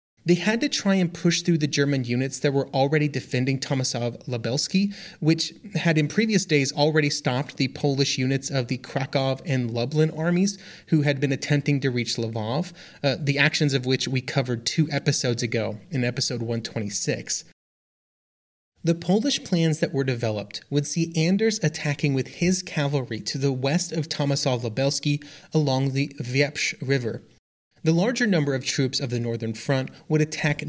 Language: English